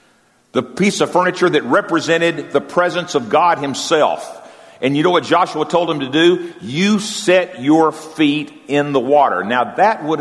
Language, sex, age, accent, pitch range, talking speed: English, male, 50-69, American, 130-195 Hz, 175 wpm